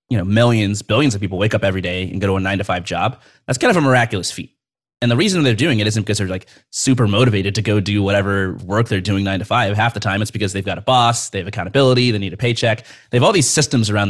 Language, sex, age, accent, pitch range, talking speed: English, male, 30-49, American, 100-125 Hz, 275 wpm